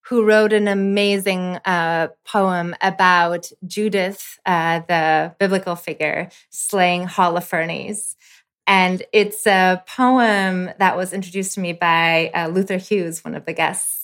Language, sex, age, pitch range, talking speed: English, female, 20-39, 175-205 Hz, 135 wpm